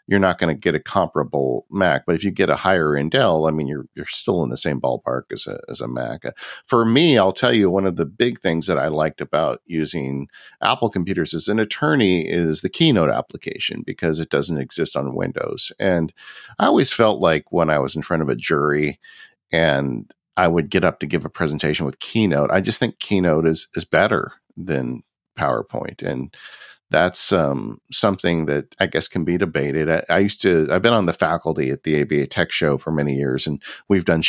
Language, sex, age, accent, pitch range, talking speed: English, male, 50-69, American, 75-95 Hz, 215 wpm